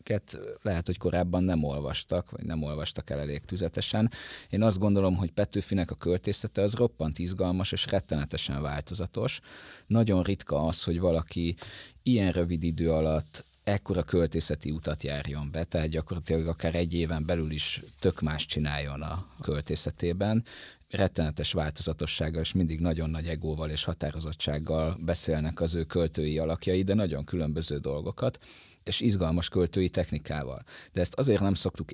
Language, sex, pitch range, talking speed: Hungarian, male, 80-95 Hz, 145 wpm